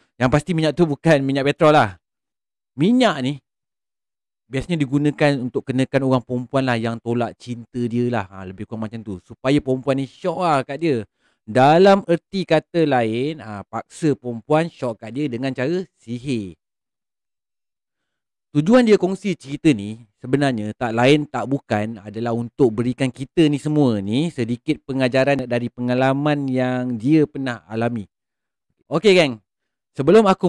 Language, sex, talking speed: Malay, male, 150 wpm